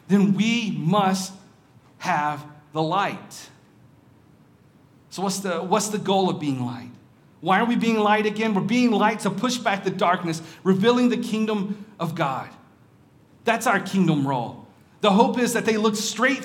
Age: 40-59